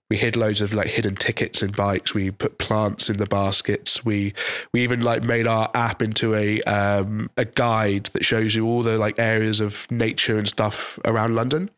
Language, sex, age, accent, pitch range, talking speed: English, male, 20-39, British, 110-130 Hz, 205 wpm